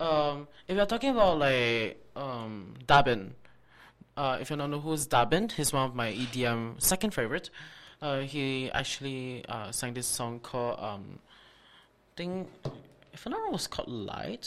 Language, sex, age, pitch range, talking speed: English, male, 20-39, 125-200 Hz, 160 wpm